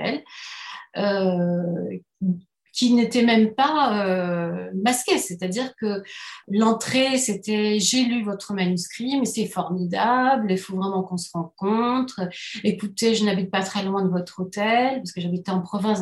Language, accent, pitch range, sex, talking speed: French, French, 185-225 Hz, female, 140 wpm